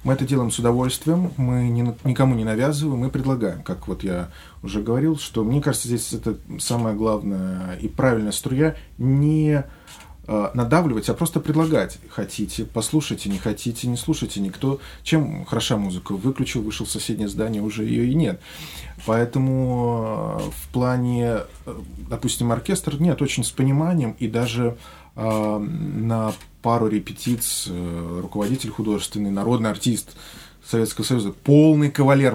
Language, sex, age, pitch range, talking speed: Russian, male, 20-39, 110-145 Hz, 135 wpm